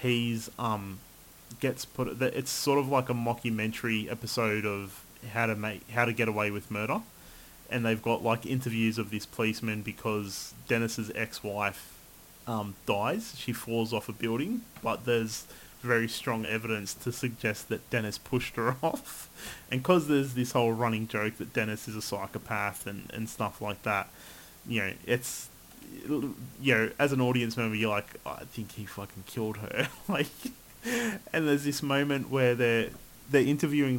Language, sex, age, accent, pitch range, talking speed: English, male, 20-39, Australian, 110-130 Hz, 165 wpm